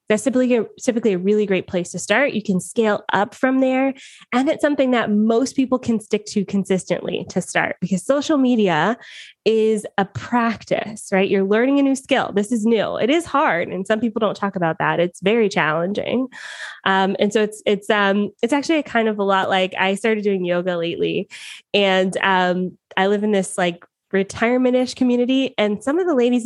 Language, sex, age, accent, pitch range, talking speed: English, female, 20-39, American, 180-235 Hz, 200 wpm